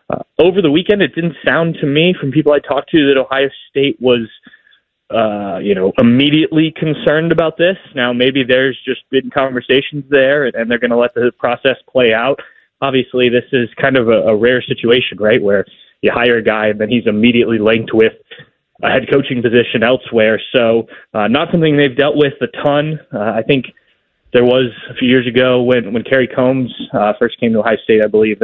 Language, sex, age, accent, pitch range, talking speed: English, male, 20-39, American, 120-145 Hz, 205 wpm